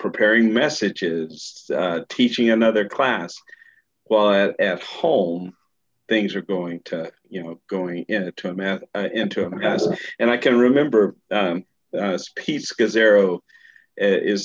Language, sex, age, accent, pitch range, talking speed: English, male, 50-69, American, 95-120 Hz, 125 wpm